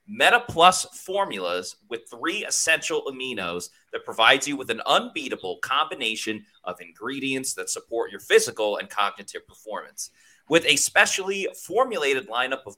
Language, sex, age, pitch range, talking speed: English, male, 30-49, 130-185 Hz, 135 wpm